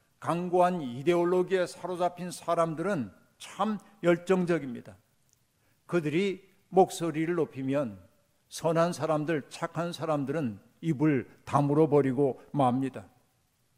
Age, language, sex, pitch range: 50-69, Korean, male, 140-180 Hz